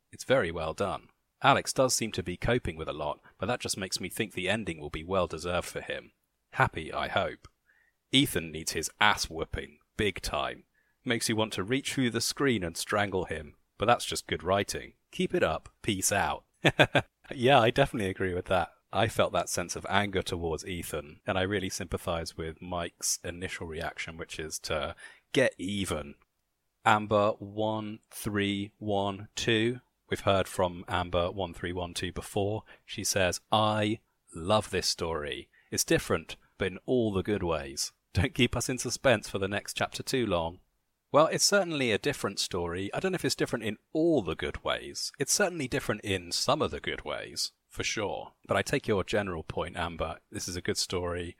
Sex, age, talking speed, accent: male, 30-49, 185 wpm, British